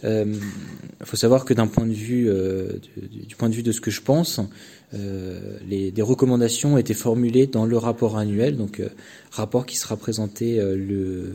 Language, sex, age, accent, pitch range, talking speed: French, male, 20-39, French, 105-120 Hz, 195 wpm